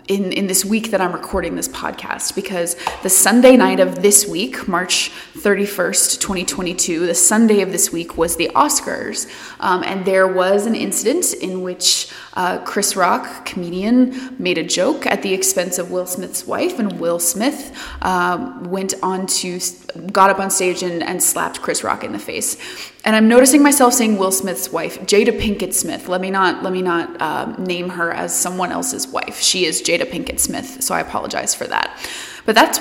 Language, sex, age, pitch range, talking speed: English, female, 20-39, 180-220 Hz, 190 wpm